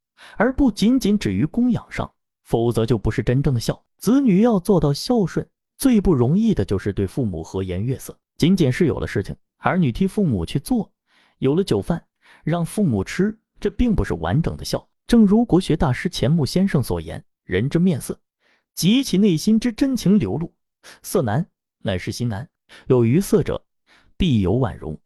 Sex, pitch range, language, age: male, 115-195 Hz, Chinese, 30-49